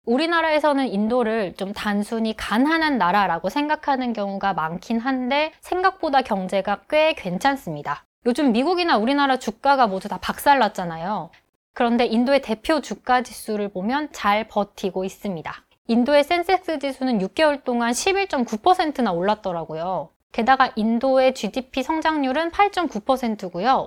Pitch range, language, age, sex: 210-295 Hz, Korean, 20-39, female